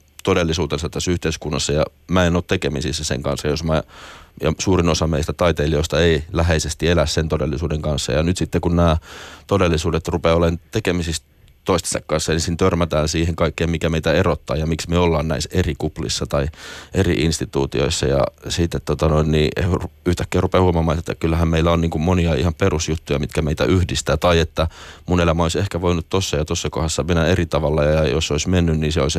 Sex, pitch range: male, 75-85 Hz